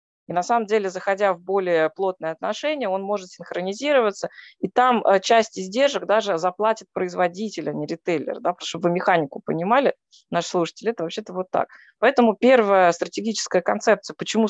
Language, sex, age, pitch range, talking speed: Russian, female, 20-39, 175-225 Hz, 155 wpm